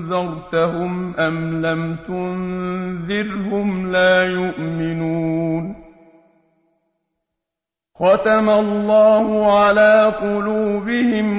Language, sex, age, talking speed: Persian, male, 50-69, 55 wpm